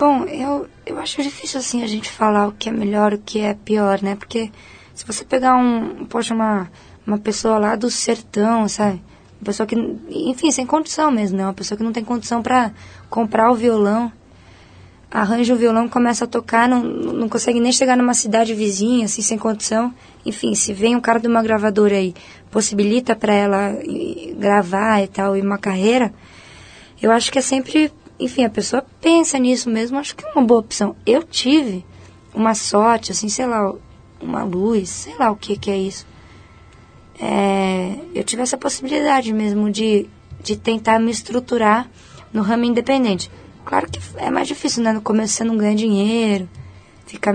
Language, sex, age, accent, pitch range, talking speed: Portuguese, female, 20-39, Brazilian, 205-245 Hz, 185 wpm